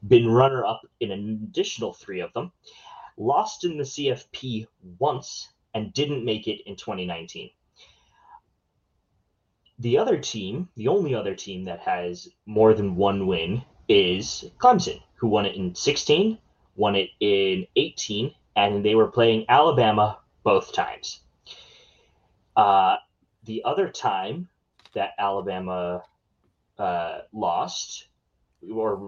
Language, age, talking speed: English, 20-39, 125 wpm